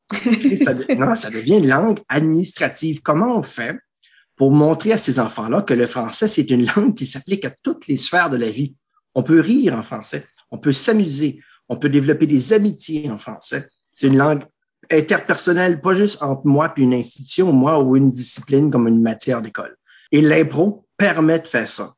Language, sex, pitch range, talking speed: French, male, 130-175 Hz, 195 wpm